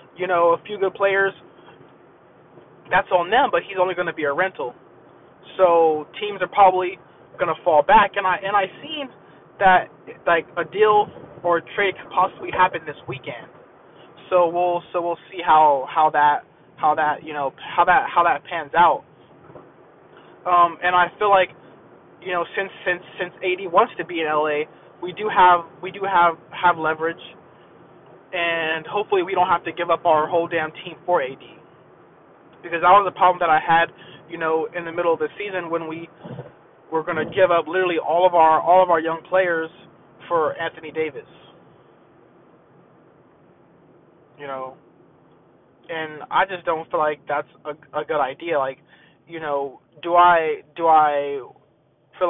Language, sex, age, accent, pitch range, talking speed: English, male, 20-39, American, 155-185 Hz, 175 wpm